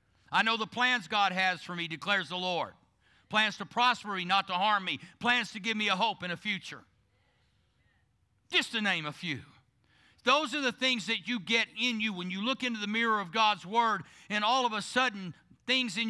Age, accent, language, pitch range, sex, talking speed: 50-69, American, English, 175-230 Hz, male, 215 wpm